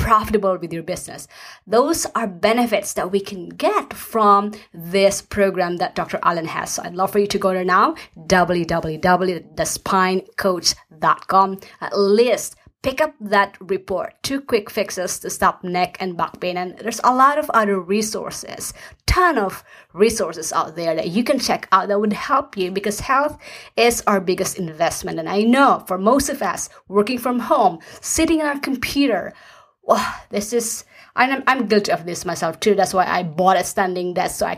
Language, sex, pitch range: English, female, 185-235 Hz